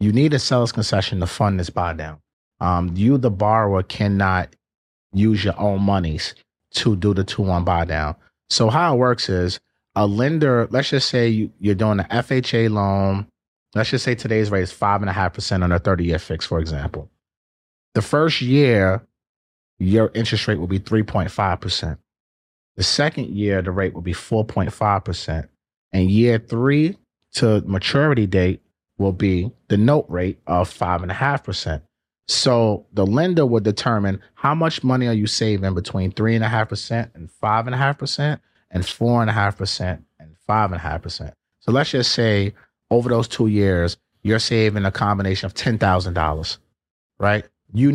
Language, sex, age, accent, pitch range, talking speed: English, male, 30-49, American, 90-115 Hz, 170 wpm